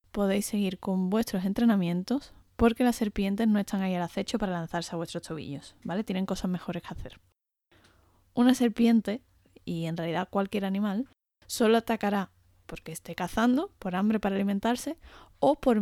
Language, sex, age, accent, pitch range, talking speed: Spanish, female, 20-39, Spanish, 180-230 Hz, 160 wpm